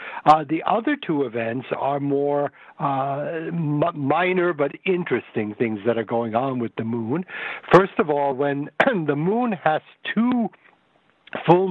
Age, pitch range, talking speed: 60-79, 120-160 Hz, 145 wpm